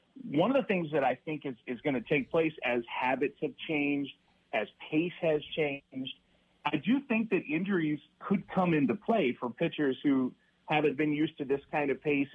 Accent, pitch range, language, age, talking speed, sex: American, 135-175 Hz, English, 30-49, 200 wpm, male